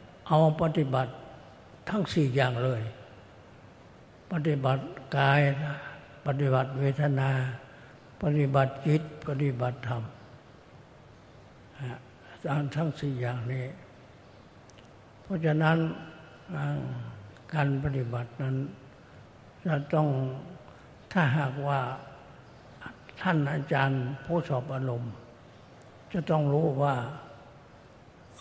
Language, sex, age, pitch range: Thai, male, 60-79, 125-145 Hz